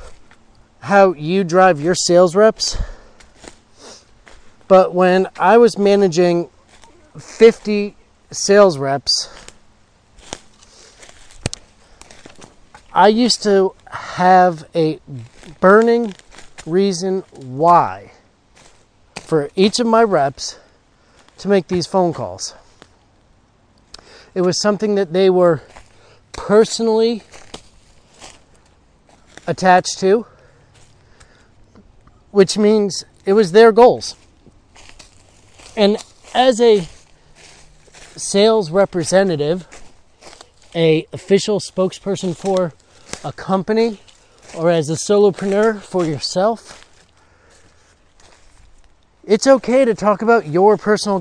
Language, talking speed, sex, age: English, 85 wpm, male, 40-59